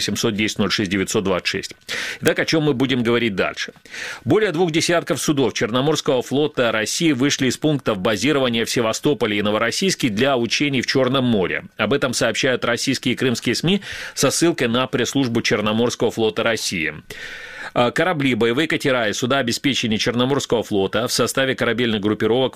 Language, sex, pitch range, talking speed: Russian, male, 110-135 Hz, 140 wpm